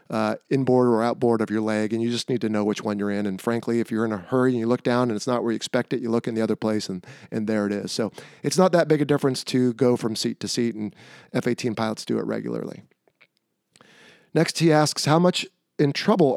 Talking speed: 265 wpm